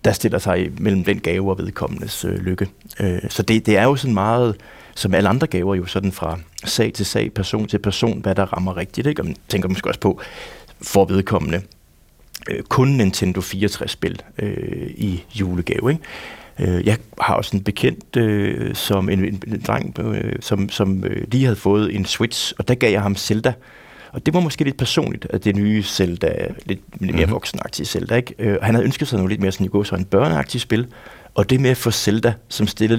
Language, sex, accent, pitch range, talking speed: Danish, male, native, 95-120 Hz, 205 wpm